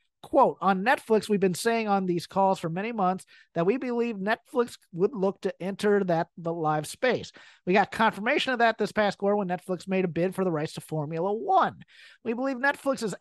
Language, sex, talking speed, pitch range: English, male, 210 wpm, 170-210 Hz